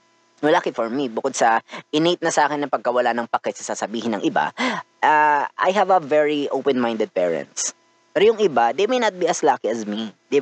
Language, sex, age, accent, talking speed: Filipino, female, 20-39, native, 215 wpm